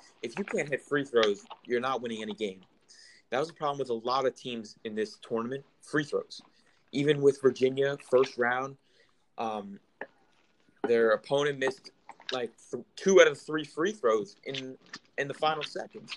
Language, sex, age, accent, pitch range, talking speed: English, male, 30-49, American, 125-195 Hz, 170 wpm